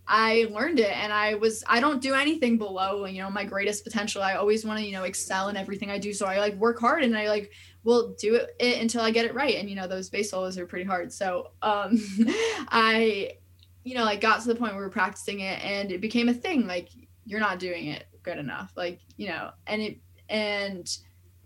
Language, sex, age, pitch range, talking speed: English, female, 10-29, 190-235 Hz, 230 wpm